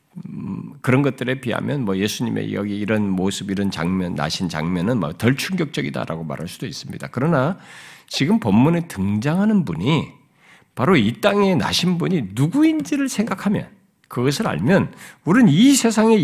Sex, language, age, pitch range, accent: male, Korean, 50-69, 145-235 Hz, native